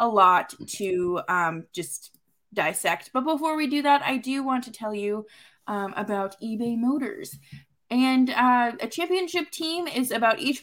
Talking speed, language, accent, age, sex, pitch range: 165 wpm, English, American, 20-39, female, 210-290 Hz